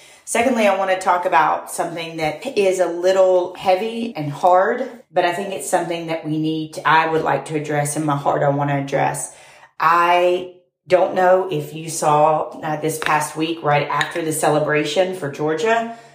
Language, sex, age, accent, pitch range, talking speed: English, female, 30-49, American, 155-185 Hz, 185 wpm